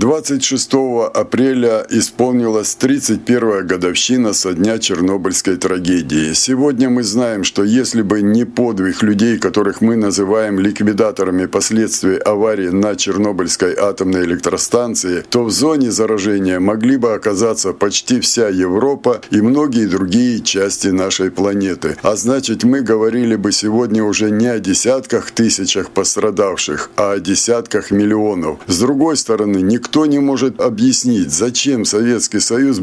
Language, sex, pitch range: Russian, male, 100-130 Hz